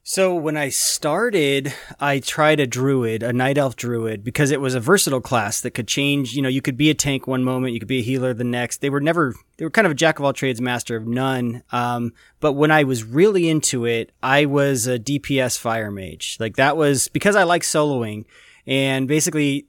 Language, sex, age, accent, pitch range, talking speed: English, male, 20-39, American, 125-160 Hz, 220 wpm